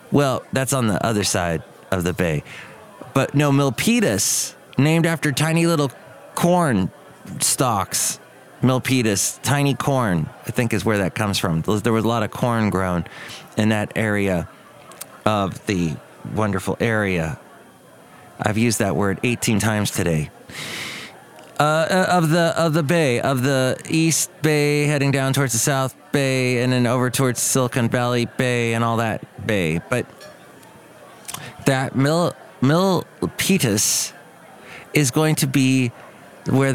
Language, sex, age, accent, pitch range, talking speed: English, male, 30-49, American, 115-150 Hz, 140 wpm